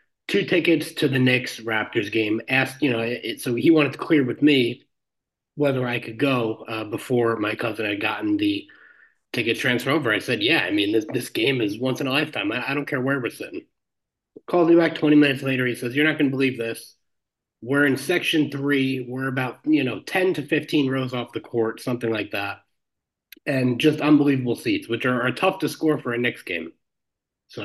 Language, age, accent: English, 30-49, American